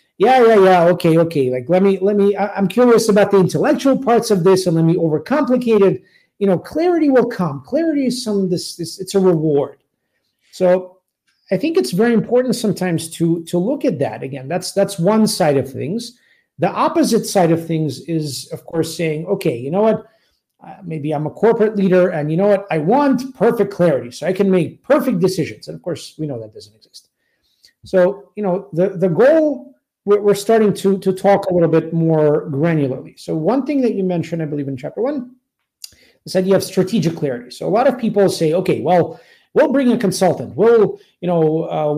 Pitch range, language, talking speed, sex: 160-210 Hz, English, 205 wpm, male